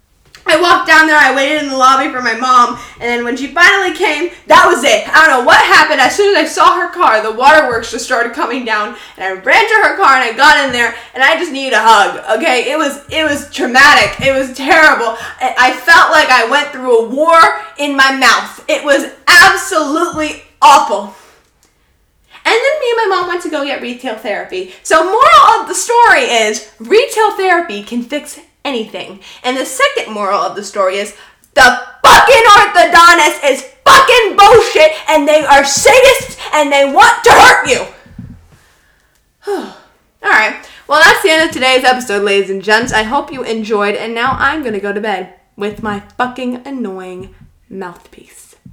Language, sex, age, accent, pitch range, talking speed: English, female, 10-29, American, 235-345 Hz, 190 wpm